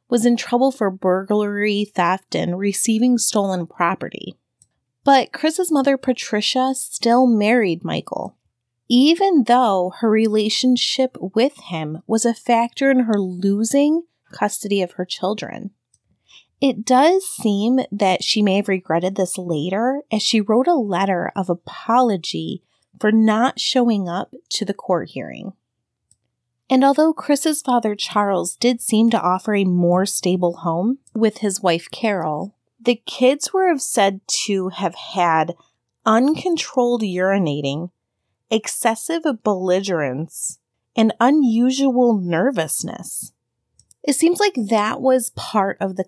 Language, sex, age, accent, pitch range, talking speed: English, female, 30-49, American, 185-250 Hz, 125 wpm